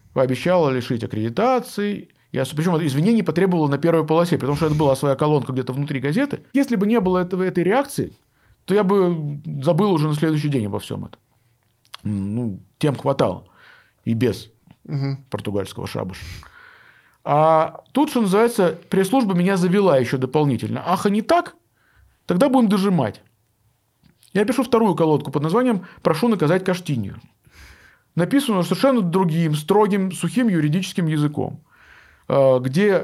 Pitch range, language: 135-200 Hz, Russian